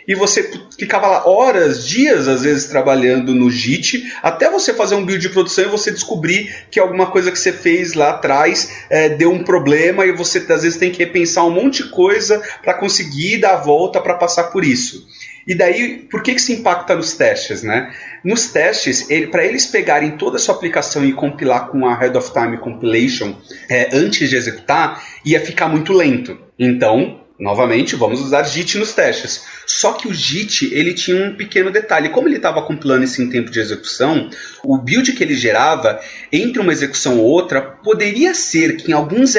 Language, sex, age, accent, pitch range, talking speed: Portuguese, male, 30-49, Brazilian, 140-210 Hz, 195 wpm